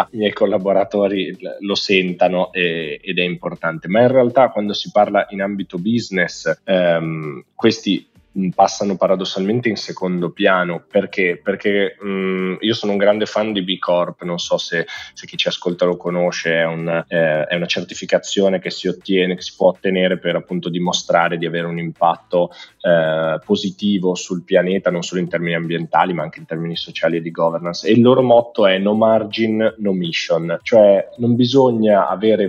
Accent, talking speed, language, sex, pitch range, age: native, 175 wpm, Italian, male, 85-110 Hz, 20-39